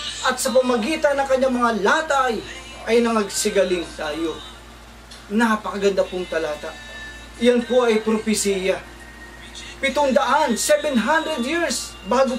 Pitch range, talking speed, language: 200-265 Hz, 100 wpm, Filipino